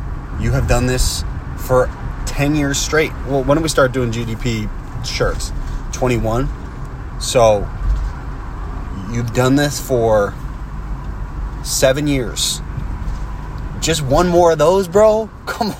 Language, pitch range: English, 110-150 Hz